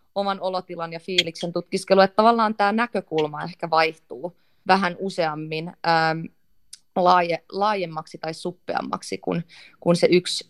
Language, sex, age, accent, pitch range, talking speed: Finnish, female, 20-39, native, 165-195 Hz, 120 wpm